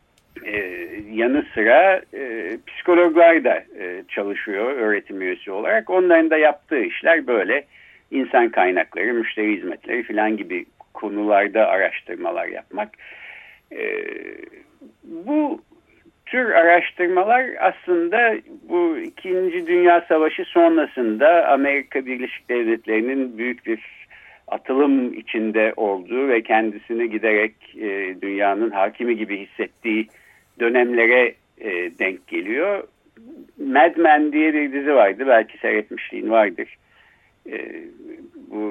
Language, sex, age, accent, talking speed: Turkish, male, 60-79, native, 100 wpm